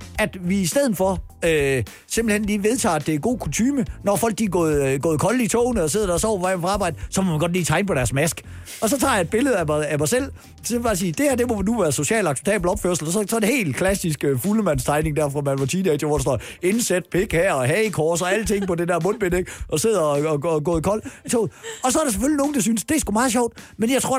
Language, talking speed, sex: Danish, 290 wpm, male